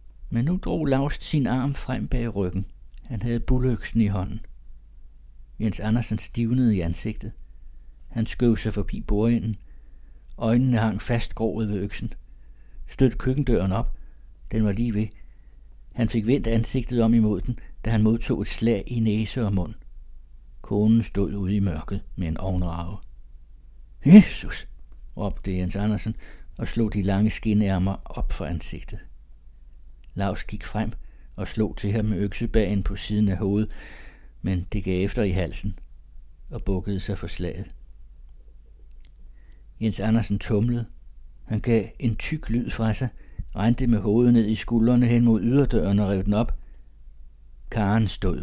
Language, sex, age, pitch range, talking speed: Danish, male, 60-79, 80-110 Hz, 150 wpm